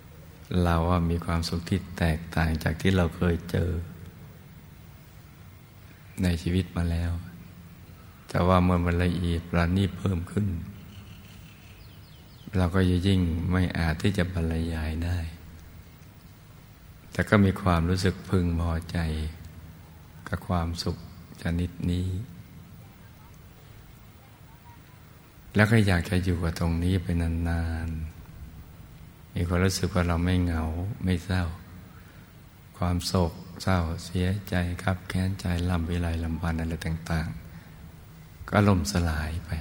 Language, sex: Thai, male